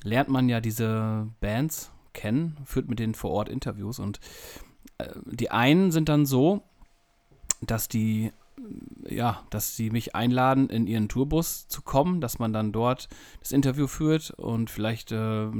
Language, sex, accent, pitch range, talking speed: German, male, German, 105-125 Hz, 160 wpm